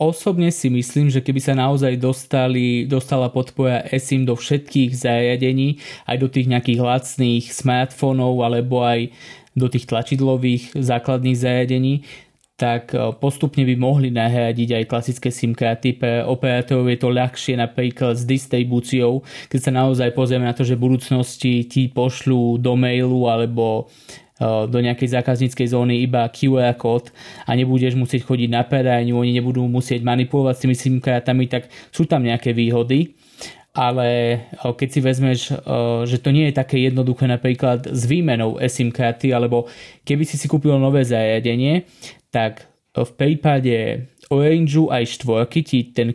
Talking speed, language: 145 wpm, Slovak